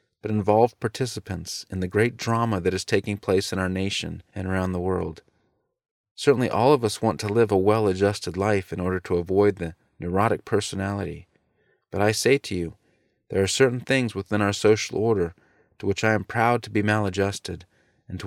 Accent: American